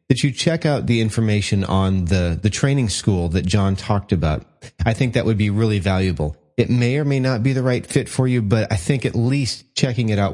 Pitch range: 100-120 Hz